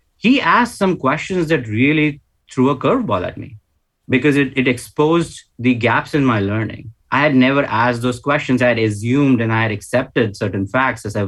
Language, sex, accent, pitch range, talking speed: English, male, Indian, 110-150 Hz, 195 wpm